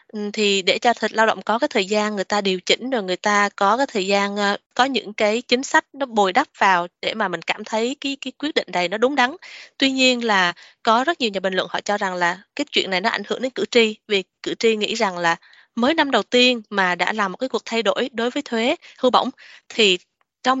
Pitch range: 205-250 Hz